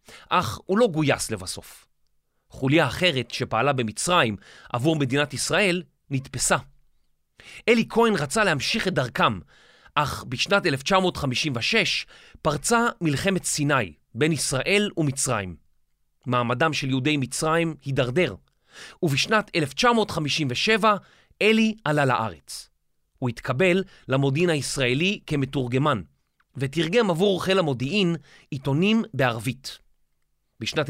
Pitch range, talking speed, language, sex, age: 125-185 Hz, 95 wpm, Hebrew, male, 30-49